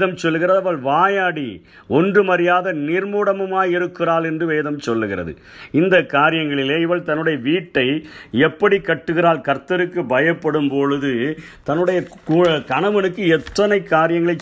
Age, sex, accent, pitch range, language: 50-69, male, native, 150-180 Hz, Tamil